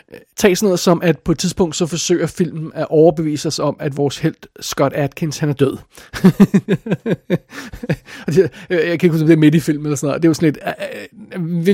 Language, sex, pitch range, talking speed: English, male, 150-180 Hz, 215 wpm